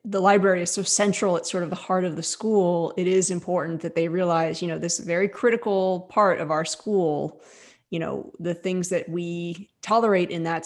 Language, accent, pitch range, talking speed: English, American, 170-195 Hz, 210 wpm